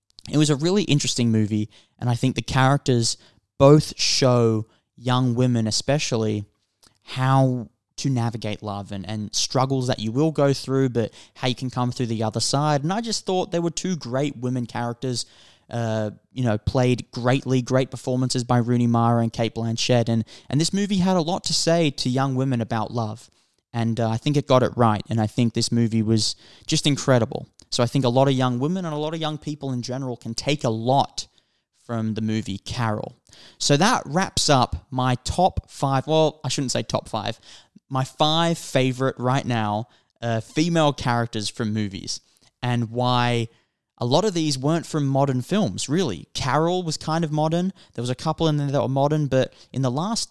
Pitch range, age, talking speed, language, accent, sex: 115-140 Hz, 10-29, 200 wpm, English, Australian, male